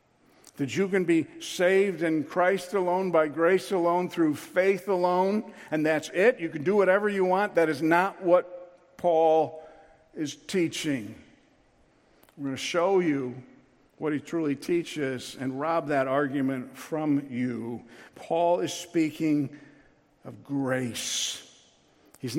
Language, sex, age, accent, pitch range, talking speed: English, male, 50-69, American, 140-170 Hz, 135 wpm